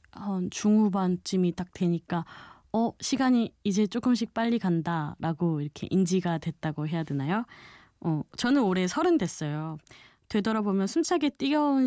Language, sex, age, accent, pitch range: Korean, female, 20-39, native, 165-225 Hz